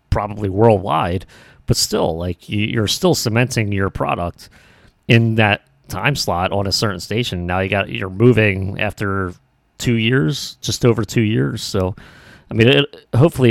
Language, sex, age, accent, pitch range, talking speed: English, male, 30-49, American, 90-115 Hz, 150 wpm